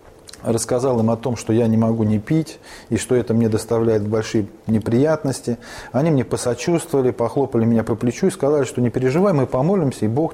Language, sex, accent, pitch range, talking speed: Russian, male, native, 115-150 Hz, 190 wpm